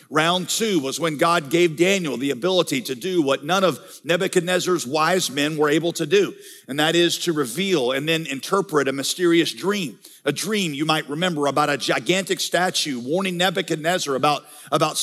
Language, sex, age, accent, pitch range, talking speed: English, male, 50-69, American, 170-220 Hz, 180 wpm